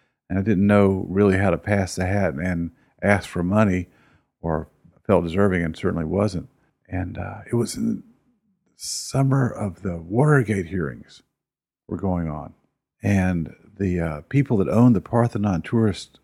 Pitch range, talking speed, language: 90-110 Hz, 155 wpm, English